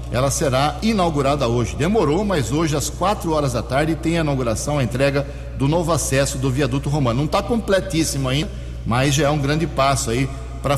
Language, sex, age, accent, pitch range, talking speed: Portuguese, male, 60-79, Brazilian, 120-155 Hz, 195 wpm